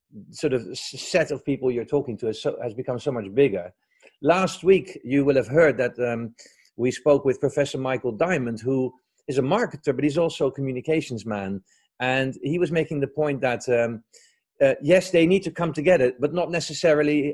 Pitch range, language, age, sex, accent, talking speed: 125-170 Hz, English, 40-59, male, Dutch, 195 wpm